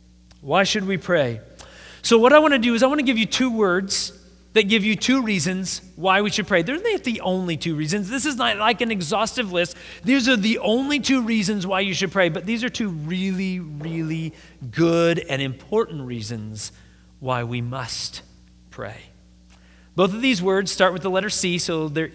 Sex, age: male, 30-49